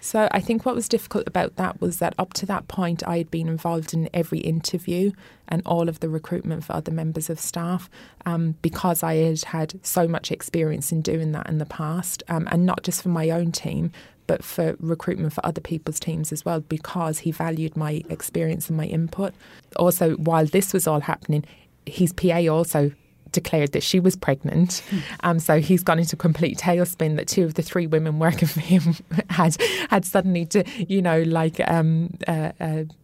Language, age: English, 20-39